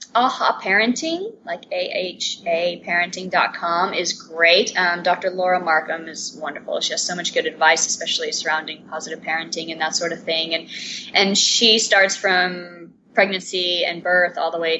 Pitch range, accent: 180-235 Hz, American